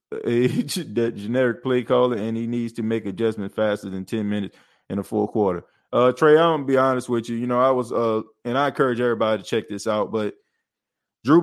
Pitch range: 110-130 Hz